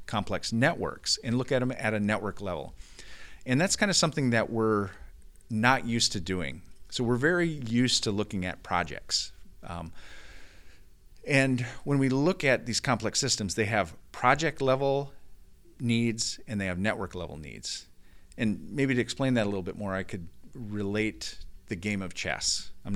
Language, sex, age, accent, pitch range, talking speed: English, male, 40-59, American, 100-130 Hz, 175 wpm